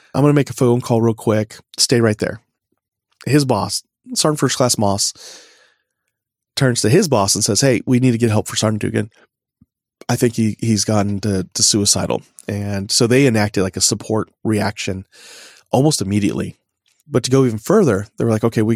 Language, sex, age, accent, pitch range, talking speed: English, male, 30-49, American, 110-130 Hz, 195 wpm